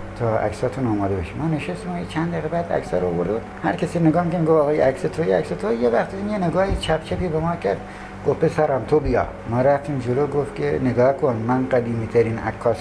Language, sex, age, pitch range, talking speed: Persian, male, 60-79, 125-165 Hz, 195 wpm